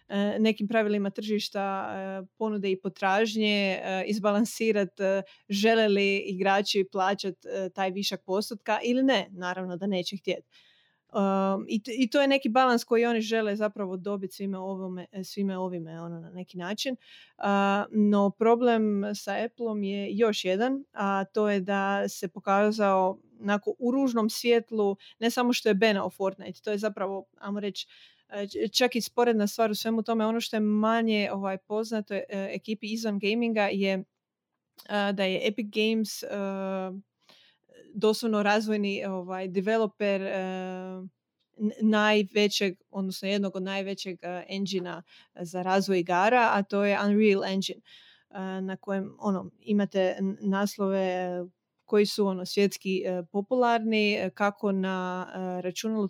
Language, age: Croatian, 30-49